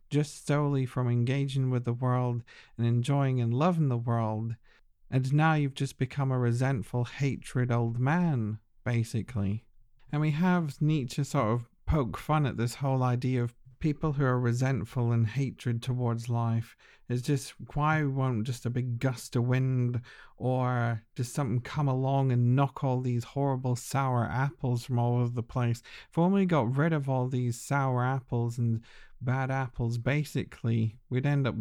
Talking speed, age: 165 wpm, 50-69